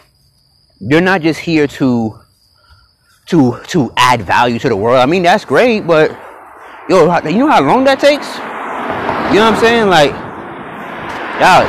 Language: English